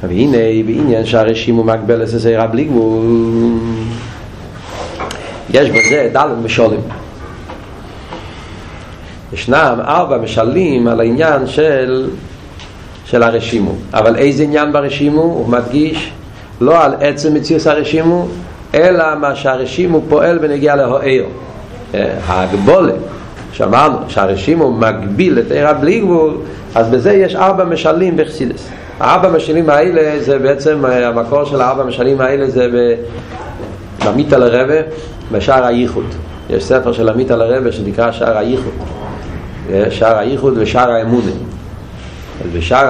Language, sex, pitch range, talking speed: Hebrew, male, 110-140 Hz, 110 wpm